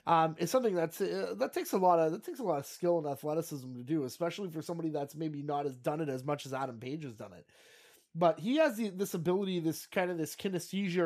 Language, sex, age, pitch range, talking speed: English, male, 20-39, 150-180 Hz, 255 wpm